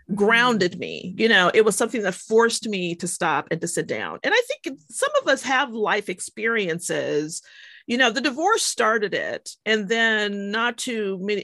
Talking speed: 190 wpm